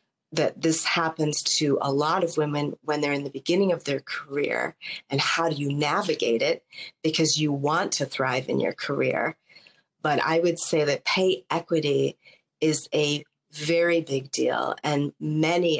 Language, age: English, 30-49